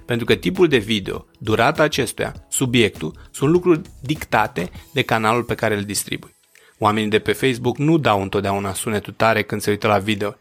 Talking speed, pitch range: 180 wpm, 105-130 Hz